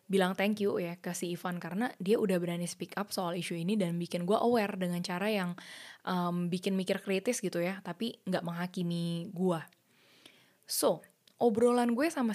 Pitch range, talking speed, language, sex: 175-225 Hz, 175 wpm, Indonesian, female